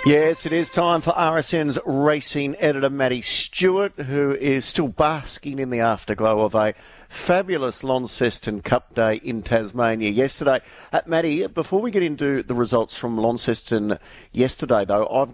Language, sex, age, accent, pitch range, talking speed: English, male, 50-69, Australian, 110-145 Hz, 150 wpm